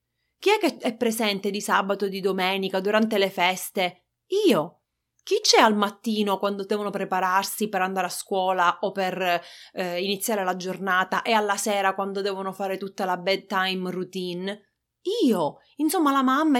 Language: Italian